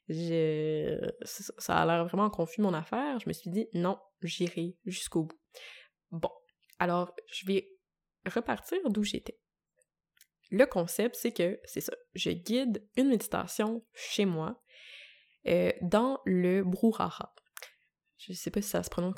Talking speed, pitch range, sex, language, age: 145 wpm, 175-225 Hz, female, French, 20-39